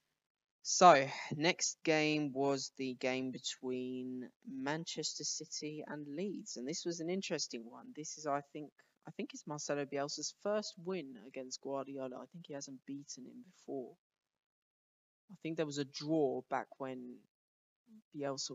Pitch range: 130-165 Hz